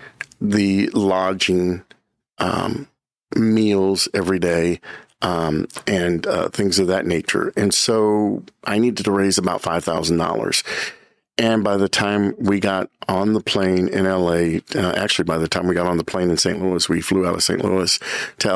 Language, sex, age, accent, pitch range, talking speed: English, male, 50-69, American, 85-100 Hz, 170 wpm